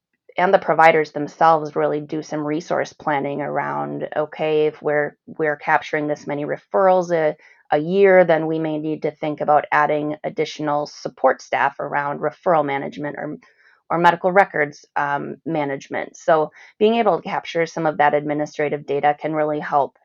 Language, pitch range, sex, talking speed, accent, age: English, 145-165 Hz, female, 160 wpm, American, 30-49